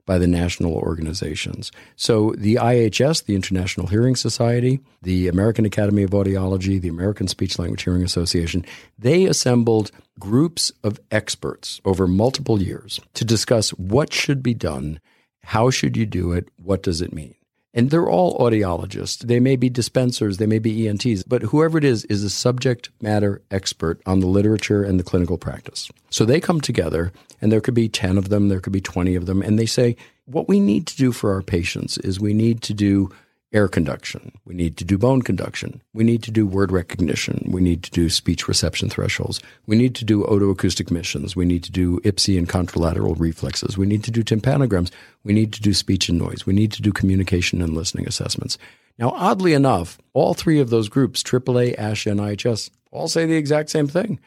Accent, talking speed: American, 200 wpm